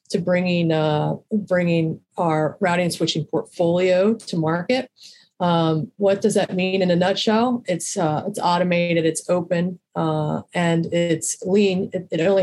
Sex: female